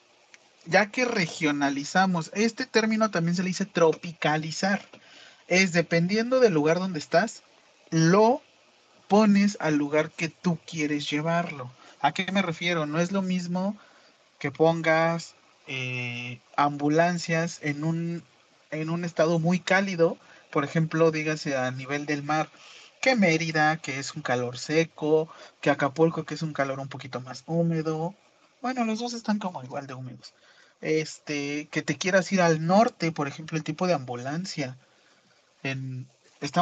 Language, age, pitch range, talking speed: Spanish, 40-59, 140-180 Hz, 145 wpm